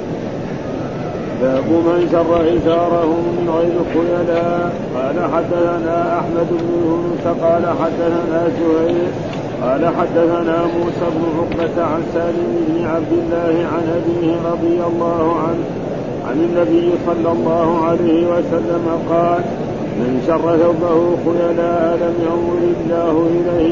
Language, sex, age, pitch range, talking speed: Arabic, male, 50-69, 165-170 Hz, 115 wpm